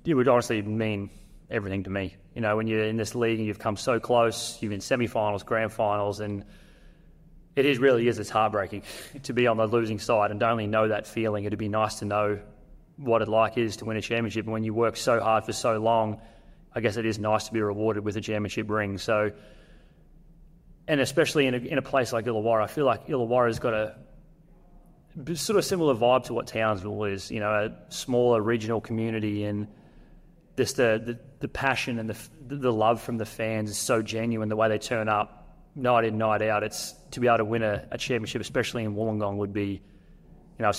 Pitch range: 105-120 Hz